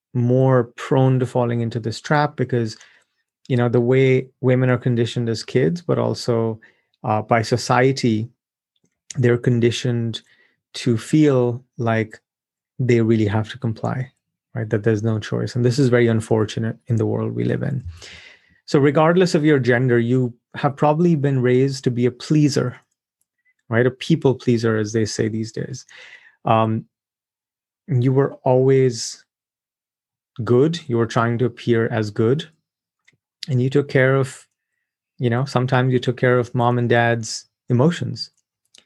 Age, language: 30-49, English